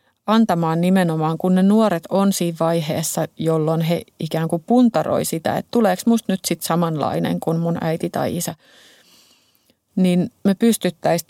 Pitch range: 165-195 Hz